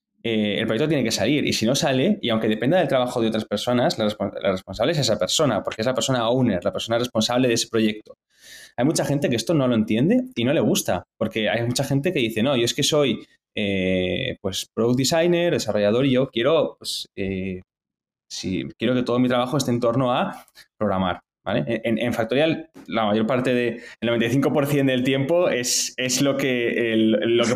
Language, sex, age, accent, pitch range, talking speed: Spanish, male, 20-39, Spanish, 110-145 Hz, 210 wpm